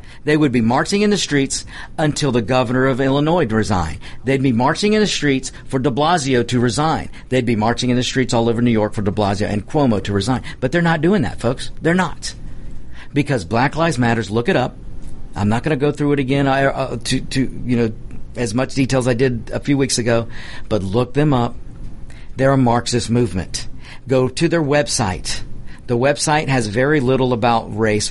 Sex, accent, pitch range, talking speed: male, American, 110-135 Hz, 210 wpm